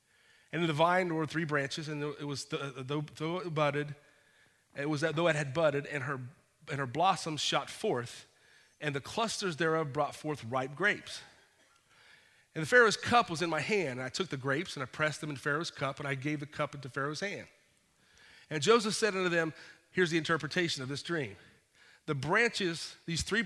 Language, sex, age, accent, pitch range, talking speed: English, male, 40-59, American, 140-175 Hz, 200 wpm